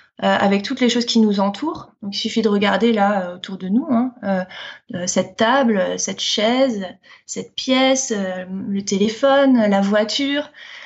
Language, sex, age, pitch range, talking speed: French, female, 20-39, 205-250 Hz, 165 wpm